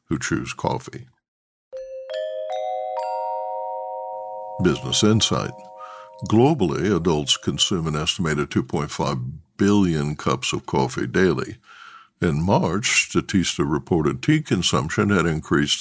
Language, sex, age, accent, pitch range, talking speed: English, male, 60-79, American, 70-105 Hz, 90 wpm